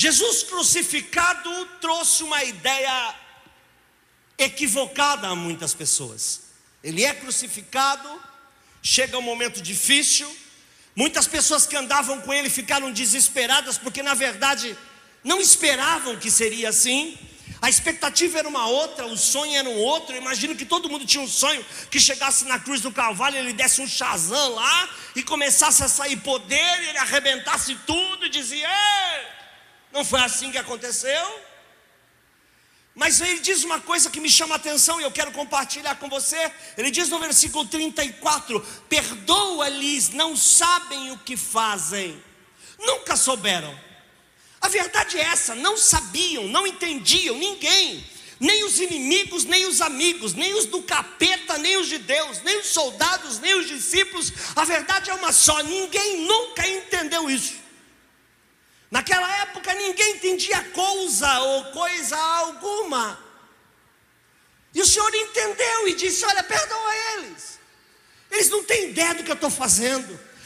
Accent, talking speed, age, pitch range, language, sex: Brazilian, 145 wpm, 50-69, 270-355 Hz, Portuguese, male